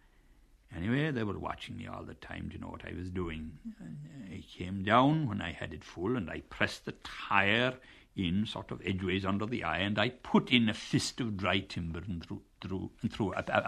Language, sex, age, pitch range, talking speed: English, male, 60-79, 90-115 Hz, 205 wpm